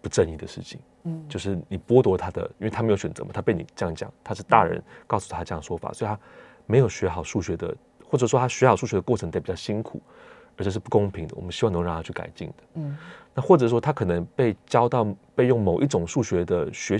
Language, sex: Chinese, male